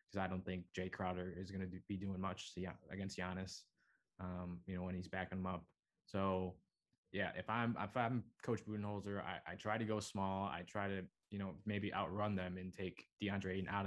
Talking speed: 210 wpm